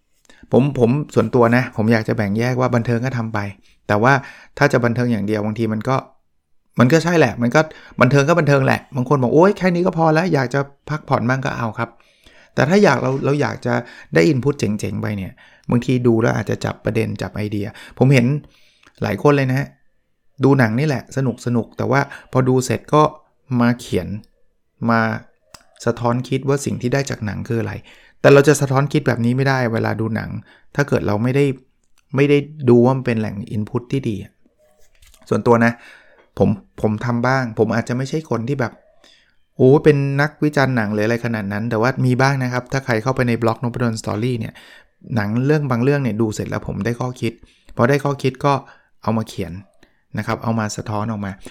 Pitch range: 110-135 Hz